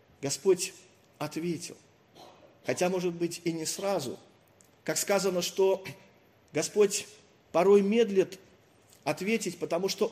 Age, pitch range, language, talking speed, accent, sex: 40-59, 165-205 Hz, Russian, 100 wpm, native, male